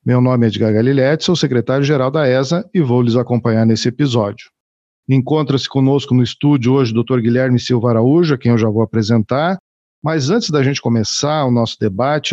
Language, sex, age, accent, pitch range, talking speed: Portuguese, male, 50-69, Brazilian, 120-145 Hz, 190 wpm